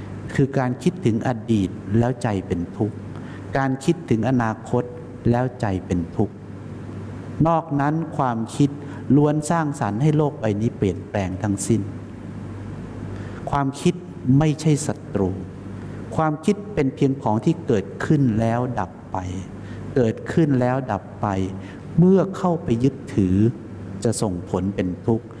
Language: English